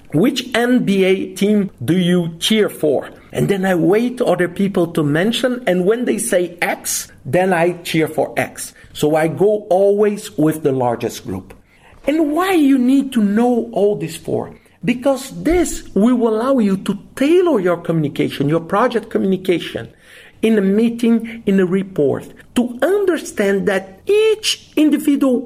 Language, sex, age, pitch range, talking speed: English, male, 50-69, 195-275 Hz, 155 wpm